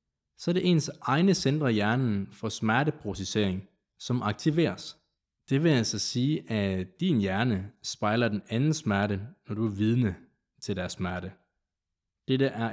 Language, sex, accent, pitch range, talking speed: Danish, male, native, 100-130 Hz, 150 wpm